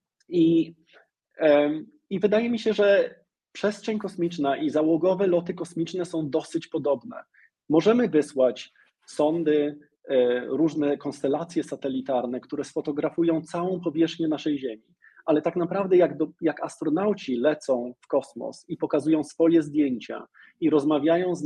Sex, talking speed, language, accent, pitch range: male, 125 wpm, Polish, native, 145-185 Hz